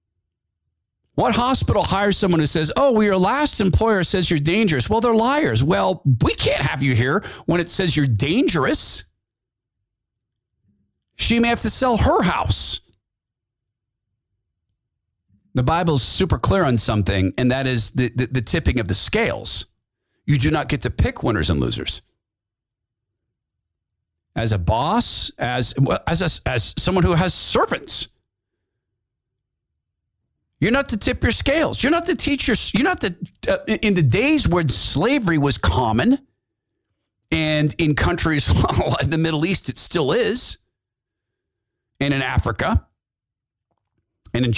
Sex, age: male, 40-59